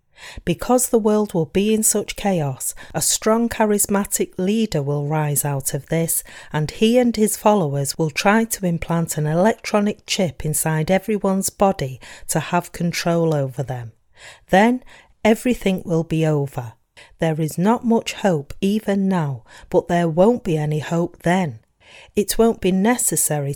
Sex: female